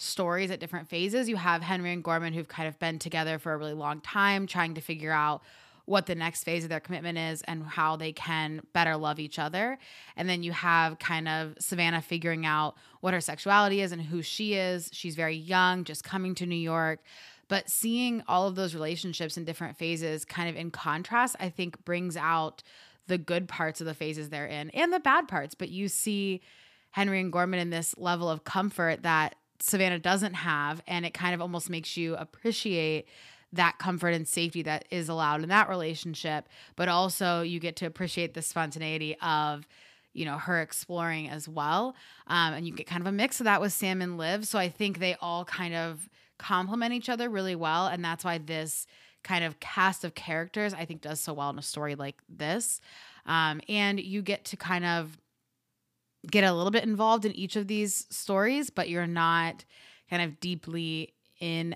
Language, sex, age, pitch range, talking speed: English, female, 20-39, 160-190 Hz, 205 wpm